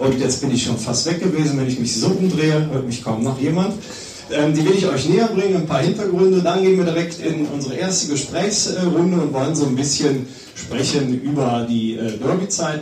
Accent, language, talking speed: German, German, 215 wpm